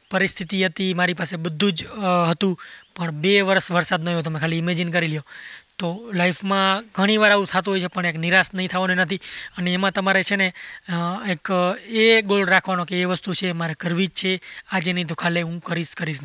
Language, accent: Gujarati, native